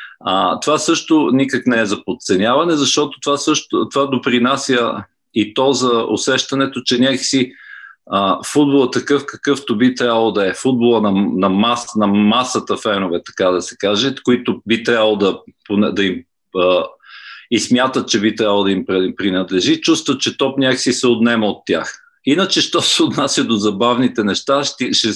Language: Bulgarian